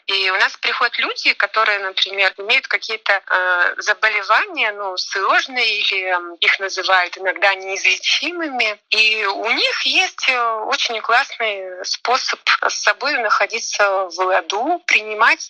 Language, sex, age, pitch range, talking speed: Russian, female, 30-49, 200-245 Hz, 120 wpm